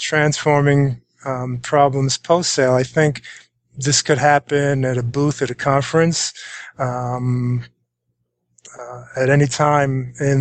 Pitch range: 130-150 Hz